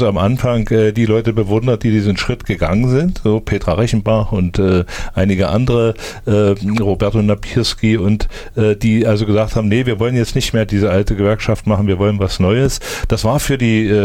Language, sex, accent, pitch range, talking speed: German, male, German, 95-110 Hz, 190 wpm